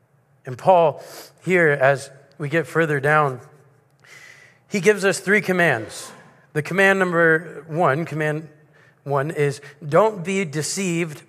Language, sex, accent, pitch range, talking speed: English, male, American, 140-170 Hz, 120 wpm